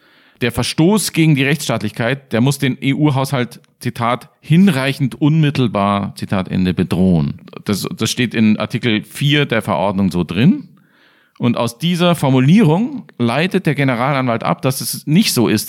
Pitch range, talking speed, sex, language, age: 115-150 Hz, 140 wpm, male, German, 40-59